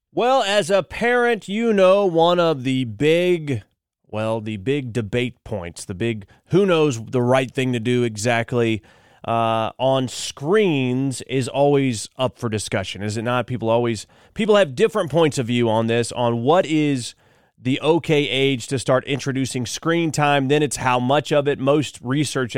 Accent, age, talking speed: American, 30-49, 175 wpm